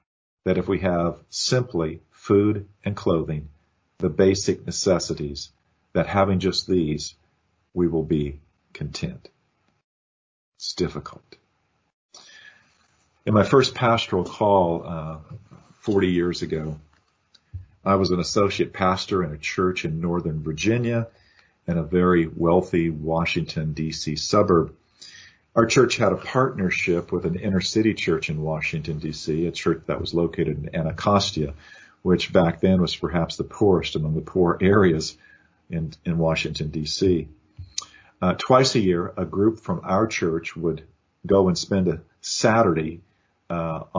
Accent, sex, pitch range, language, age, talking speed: American, male, 80-100 Hz, English, 50-69, 130 wpm